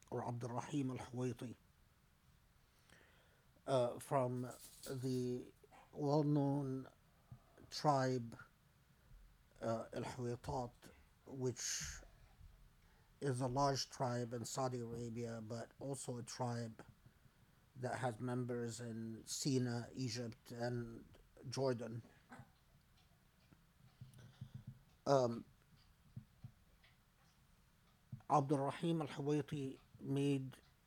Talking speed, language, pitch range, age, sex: 70 wpm, English, 120-140 Hz, 50-69, male